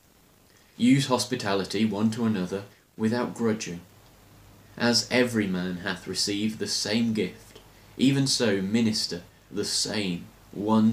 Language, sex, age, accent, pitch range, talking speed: English, male, 30-49, British, 100-115 Hz, 115 wpm